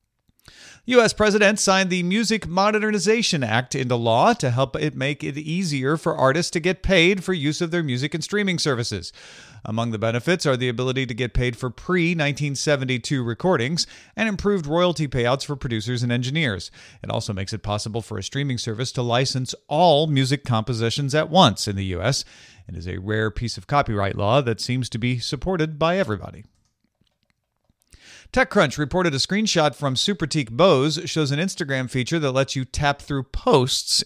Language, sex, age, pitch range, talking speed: English, male, 40-59, 115-165 Hz, 175 wpm